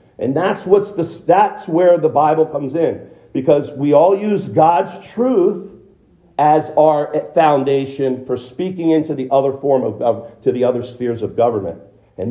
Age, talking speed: 50-69, 160 wpm